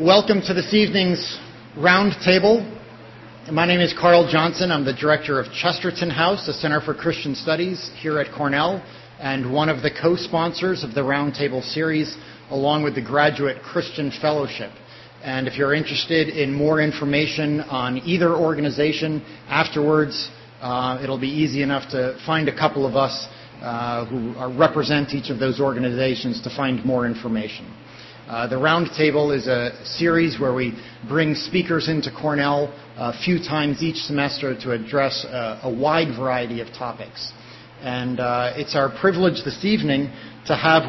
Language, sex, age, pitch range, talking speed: English, male, 40-59, 130-155 Hz, 155 wpm